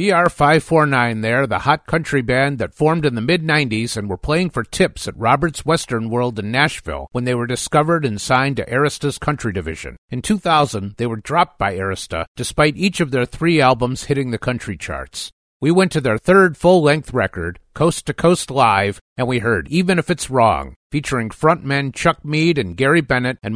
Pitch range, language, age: 115-155 Hz, English, 50-69